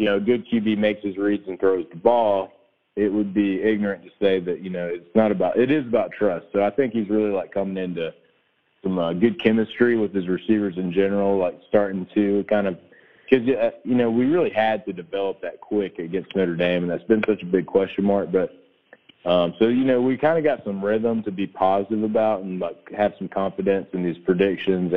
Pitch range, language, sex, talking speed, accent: 90-110 Hz, English, male, 225 wpm, American